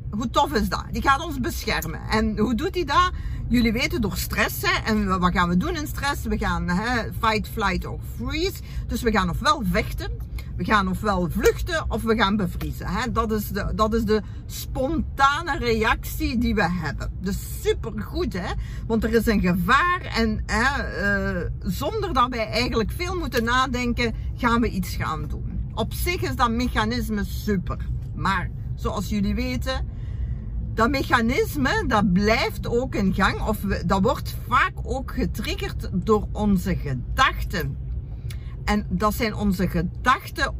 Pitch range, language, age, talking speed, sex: 180-240 Hz, Dutch, 50-69, 165 wpm, female